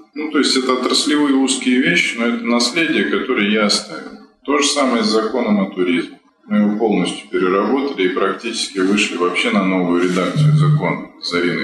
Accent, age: native, 20-39